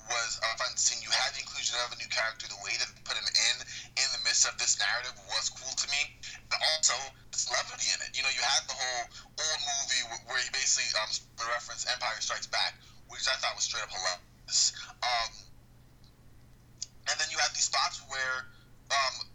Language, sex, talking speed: English, male, 210 wpm